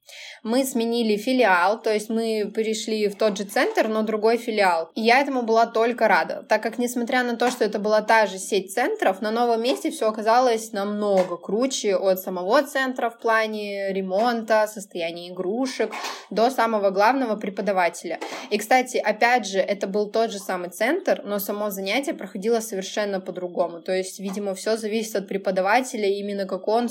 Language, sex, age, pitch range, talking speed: Russian, female, 20-39, 195-240 Hz, 170 wpm